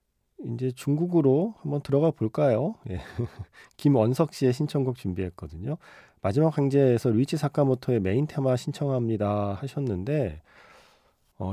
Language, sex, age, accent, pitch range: Korean, male, 40-59, native, 105-145 Hz